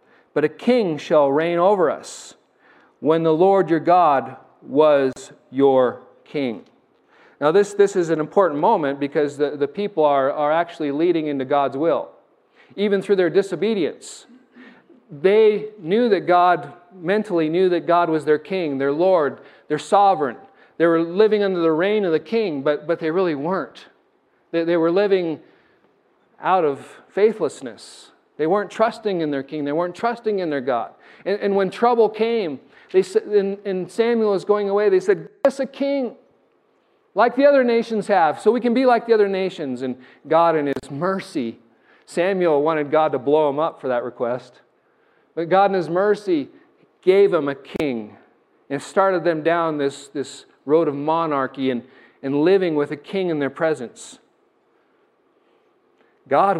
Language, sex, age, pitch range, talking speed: English, male, 40-59, 150-220 Hz, 170 wpm